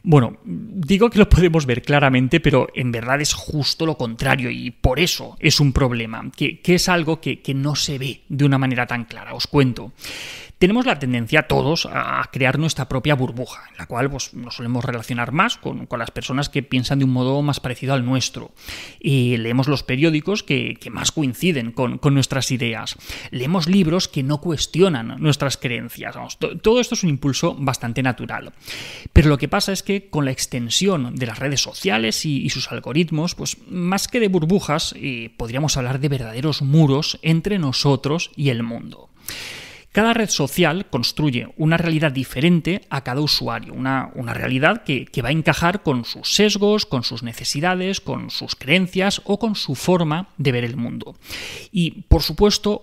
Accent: Spanish